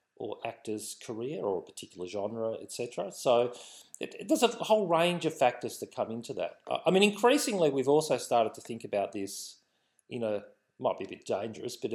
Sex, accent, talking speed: male, Australian, 200 wpm